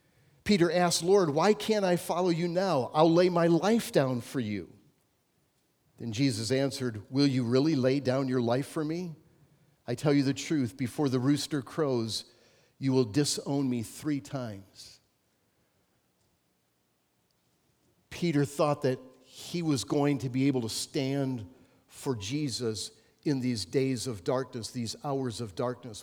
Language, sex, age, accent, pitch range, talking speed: English, male, 50-69, American, 125-160 Hz, 150 wpm